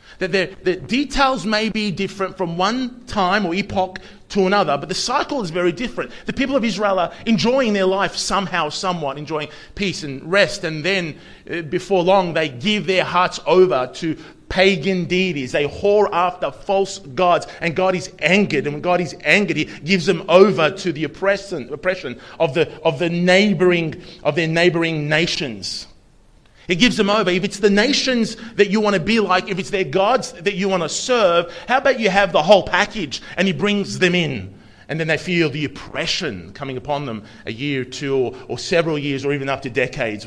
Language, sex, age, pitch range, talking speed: English, male, 30-49, 135-195 Hz, 195 wpm